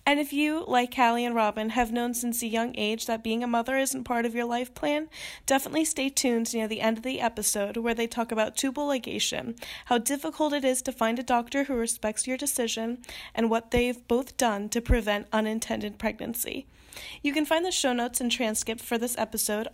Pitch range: 230-275 Hz